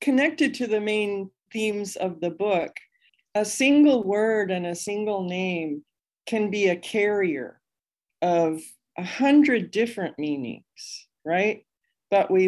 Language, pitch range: English, 160-220 Hz